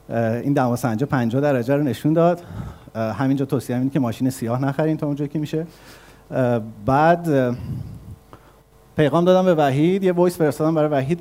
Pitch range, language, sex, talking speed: 115-150 Hz, Persian, male, 155 wpm